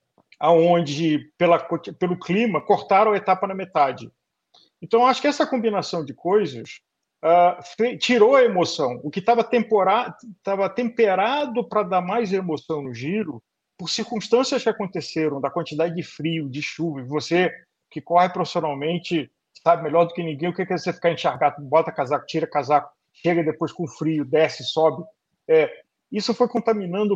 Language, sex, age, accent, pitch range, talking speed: Portuguese, male, 50-69, Brazilian, 155-215 Hz, 160 wpm